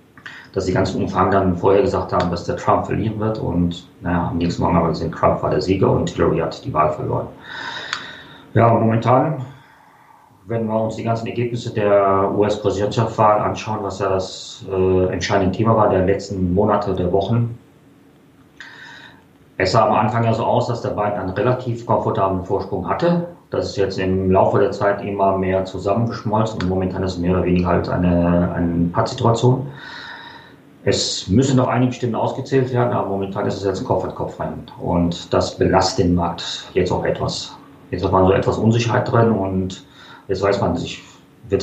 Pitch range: 95-115 Hz